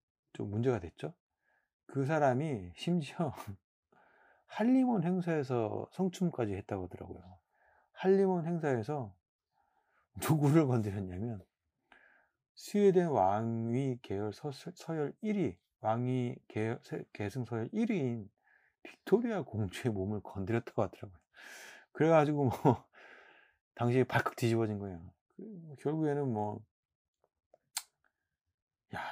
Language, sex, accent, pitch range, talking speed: English, male, Korean, 100-150 Hz, 80 wpm